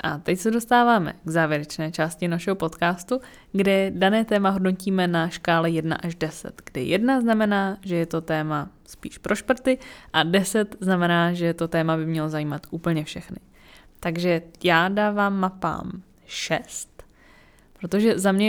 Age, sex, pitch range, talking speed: 20-39, female, 175-195 Hz, 155 wpm